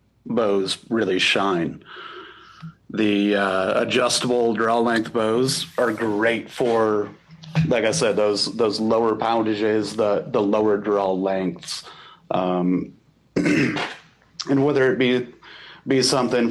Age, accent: 30-49, American